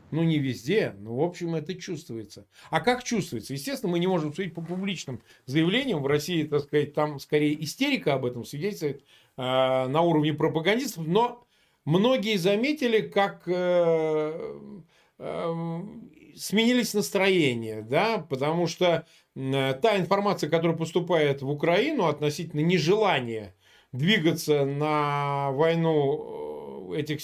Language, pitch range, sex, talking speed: Russian, 150-205 Hz, male, 115 wpm